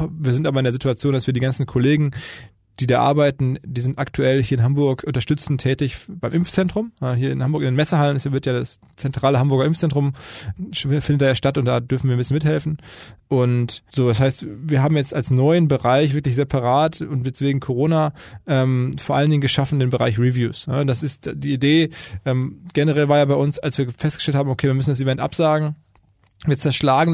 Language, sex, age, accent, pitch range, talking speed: German, male, 20-39, German, 130-150 Hz, 205 wpm